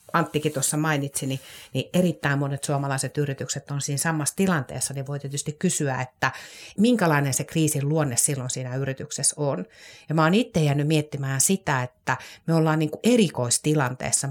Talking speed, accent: 150 wpm, native